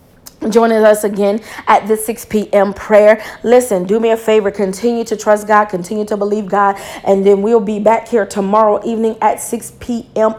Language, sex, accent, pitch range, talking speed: English, female, American, 200-235 Hz, 185 wpm